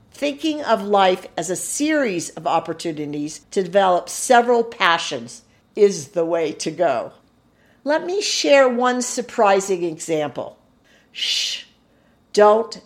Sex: female